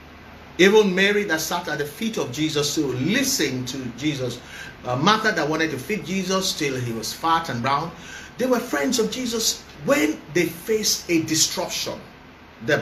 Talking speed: 175 wpm